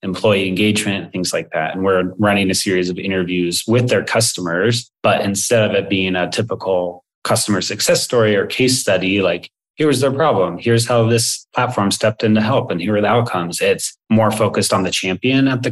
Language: English